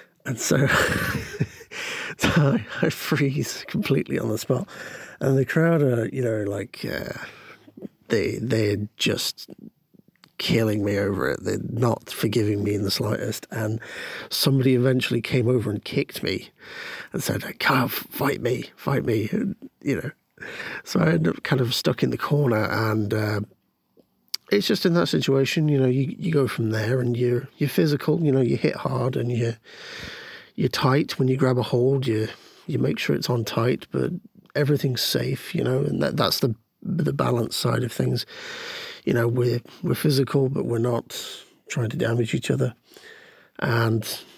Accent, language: British, English